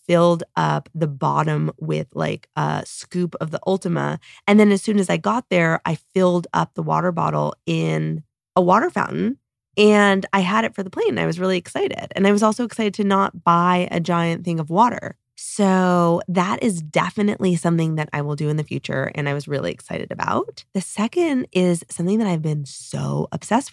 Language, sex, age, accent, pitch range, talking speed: English, female, 20-39, American, 155-195 Hz, 200 wpm